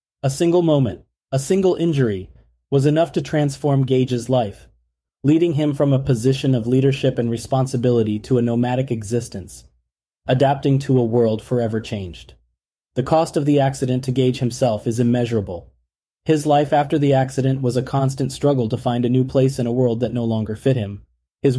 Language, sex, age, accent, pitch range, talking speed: English, male, 30-49, American, 110-135 Hz, 180 wpm